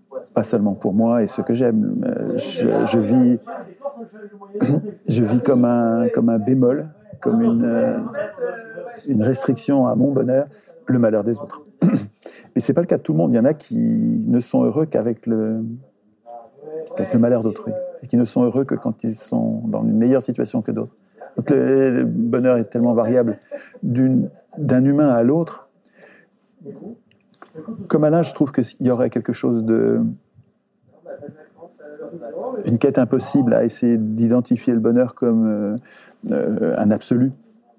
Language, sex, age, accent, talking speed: French, male, 50-69, French, 160 wpm